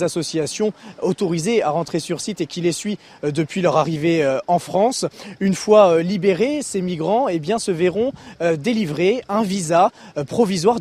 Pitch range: 165-215 Hz